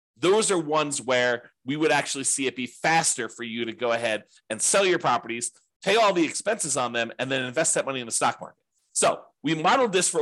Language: English